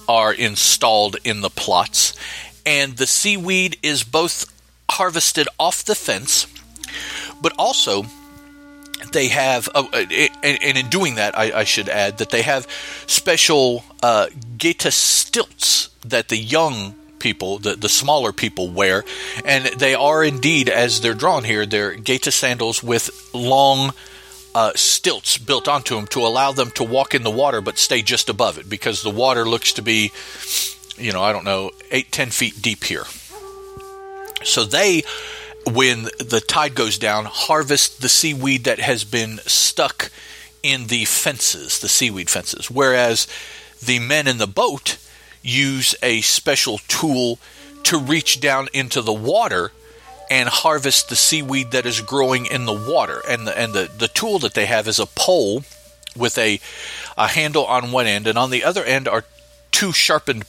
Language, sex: English, male